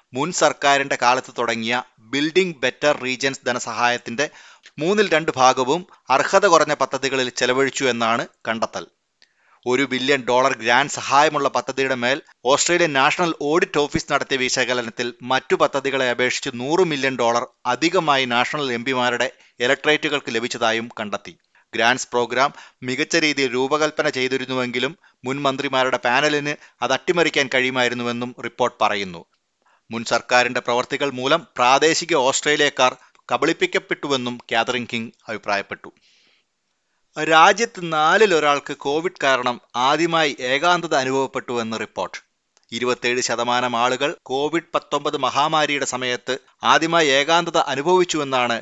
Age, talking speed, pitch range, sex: 30-49, 100 wpm, 125-150 Hz, male